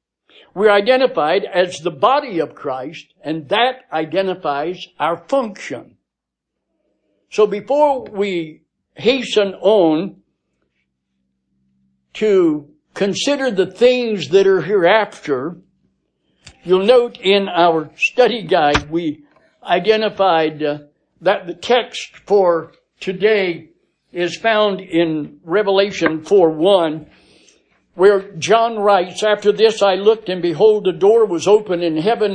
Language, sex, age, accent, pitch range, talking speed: English, male, 60-79, American, 170-220 Hz, 105 wpm